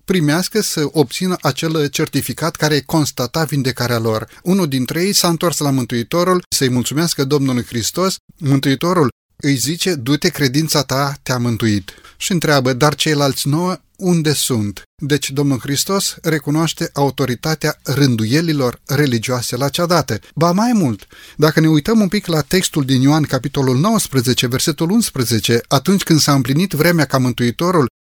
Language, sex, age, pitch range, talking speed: Romanian, male, 30-49, 130-175 Hz, 145 wpm